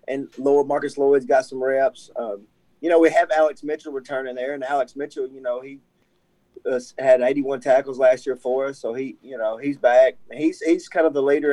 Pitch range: 125-150 Hz